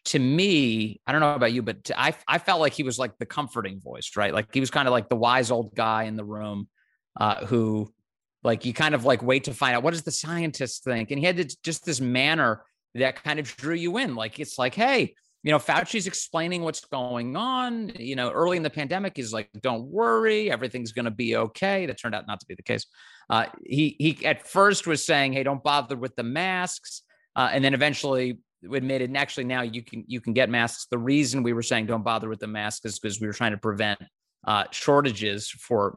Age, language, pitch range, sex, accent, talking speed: 30-49, English, 115-165 Hz, male, American, 235 wpm